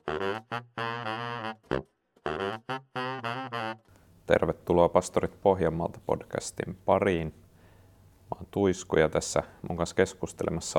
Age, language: 30-49, Finnish